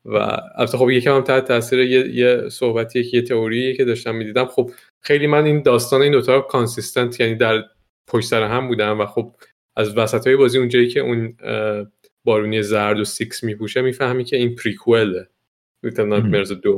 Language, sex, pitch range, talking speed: Persian, male, 105-125 Hz, 190 wpm